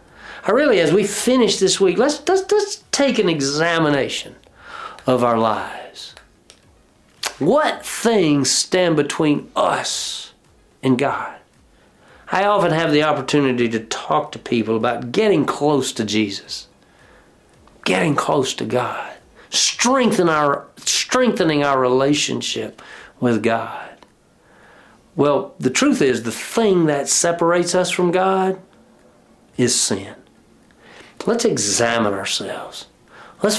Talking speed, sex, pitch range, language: 110 wpm, male, 115-175 Hz, English